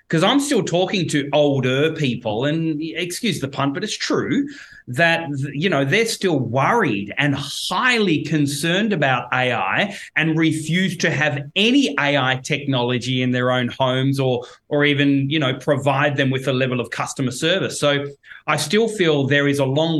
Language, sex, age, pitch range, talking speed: English, male, 30-49, 135-170 Hz, 170 wpm